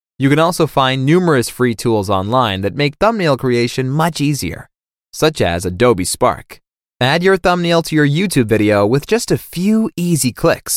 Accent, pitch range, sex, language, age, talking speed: American, 105-170 Hz, male, German, 20-39, 175 wpm